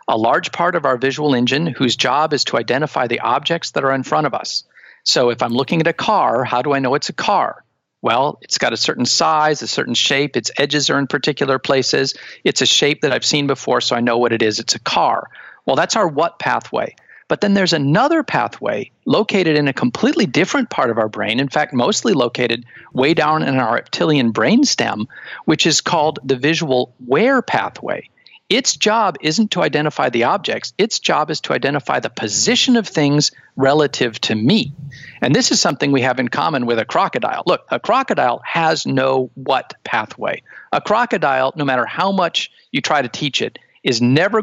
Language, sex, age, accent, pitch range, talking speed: English, male, 50-69, American, 125-160 Hz, 205 wpm